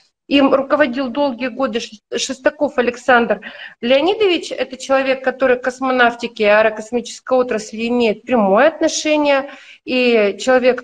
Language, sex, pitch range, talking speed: Russian, female, 235-305 Hz, 105 wpm